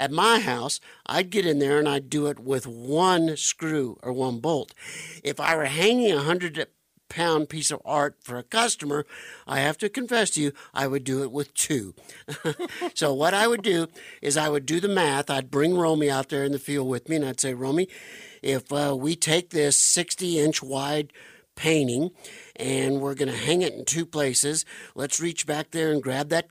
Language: English